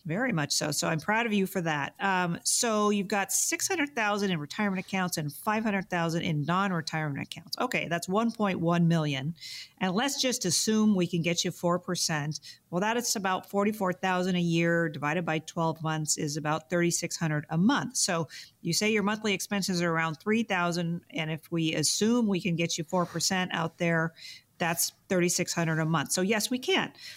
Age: 40-59